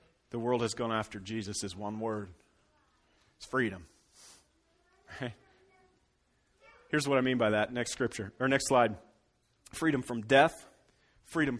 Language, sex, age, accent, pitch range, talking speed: English, male, 30-49, American, 105-140 Hz, 140 wpm